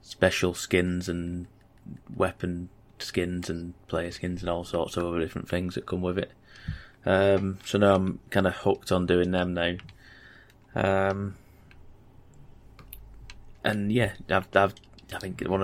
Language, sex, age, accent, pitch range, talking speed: English, male, 20-39, British, 90-105 Hz, 145 wpm